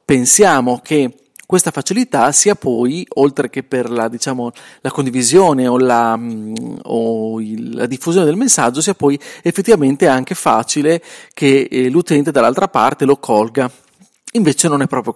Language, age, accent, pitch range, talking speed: Italian, 40-59, native, 130-180 Hz, 135 wpm